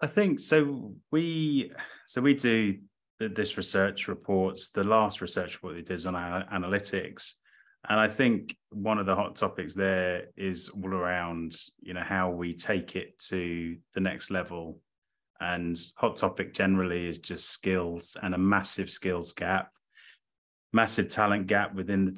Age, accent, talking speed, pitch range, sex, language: 20-39, British, 160 wpm, 90-100 Hz, male, English